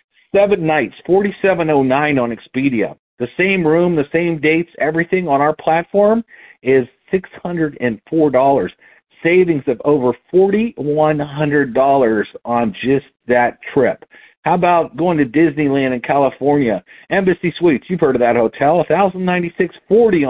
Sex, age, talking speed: male, 50-69, 120 wpm